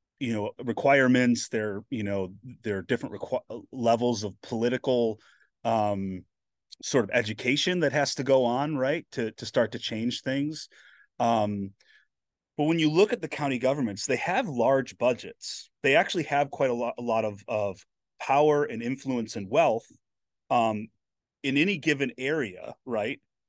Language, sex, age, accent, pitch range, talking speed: English, male, 30-49, American, 110-140 Hz, 160 wpm